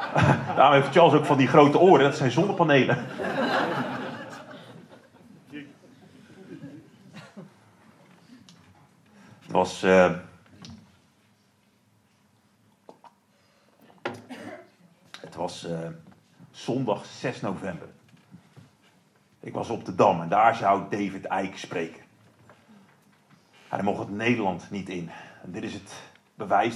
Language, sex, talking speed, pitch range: Dutch, male, 95 wpm, 105-150 Hz